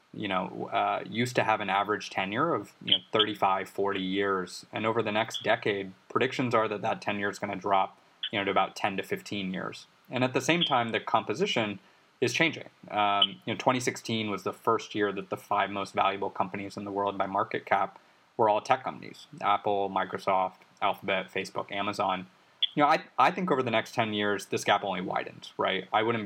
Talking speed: 215 wpm